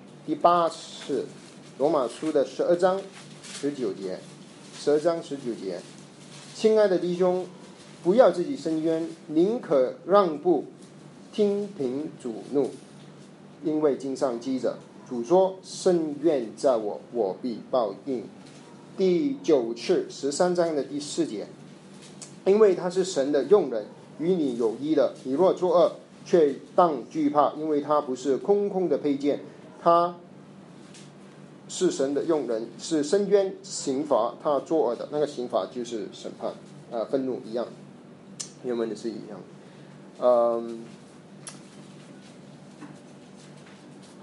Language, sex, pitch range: Chinese, male, 140-200 Hz